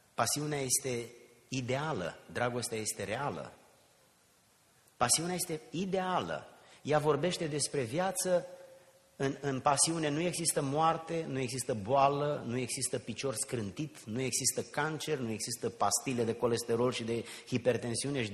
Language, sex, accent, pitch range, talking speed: Romanian, male, native, 110-175 Hz, 125 wpm